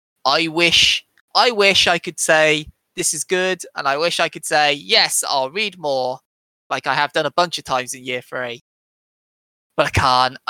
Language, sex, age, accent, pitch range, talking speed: English, male, 20-39, British, 125-160 Hz, 195 wpm